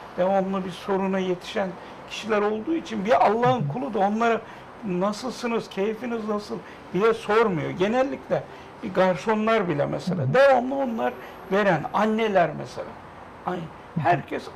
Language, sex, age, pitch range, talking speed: Turkish, male, 60-79, 170-230 Hz, 115 wpm